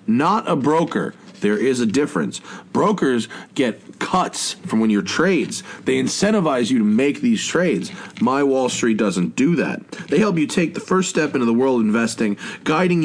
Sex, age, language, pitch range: male, 30-49, English, 135-195 Hz